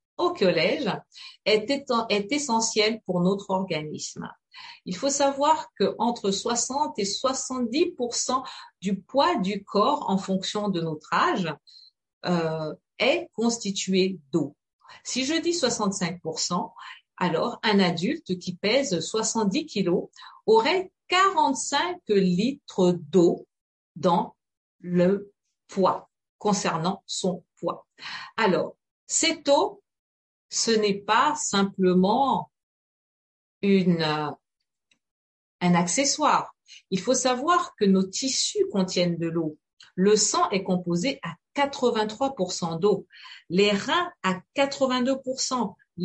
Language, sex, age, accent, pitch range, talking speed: French, female, 50-69, French, 190-275 Hz, 105 wpm